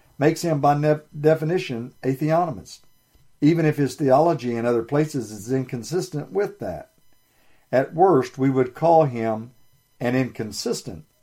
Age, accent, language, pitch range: 50-69, American, English, 115-150 Hz